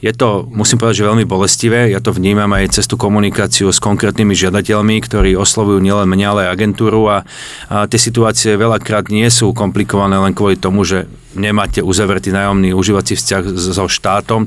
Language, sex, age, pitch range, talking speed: Slovak, male, 40-59, 100-110 Hz, 175 wpm